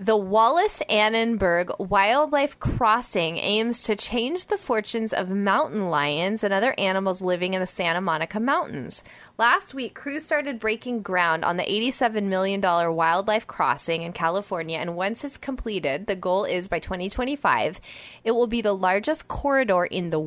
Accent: American